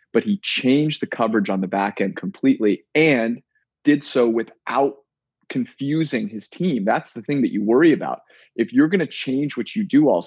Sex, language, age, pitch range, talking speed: male, English, 30-49, 105-140 Hz, 195 wpm